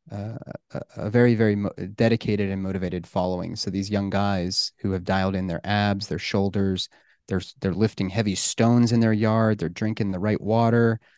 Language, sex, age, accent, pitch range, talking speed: English, male, 30-49, American, 100-120 Hz, 190 wpm